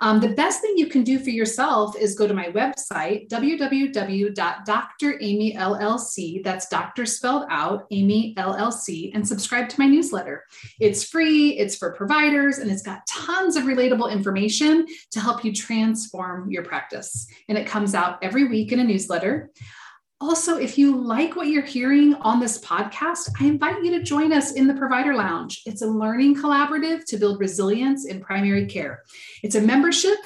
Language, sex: English, female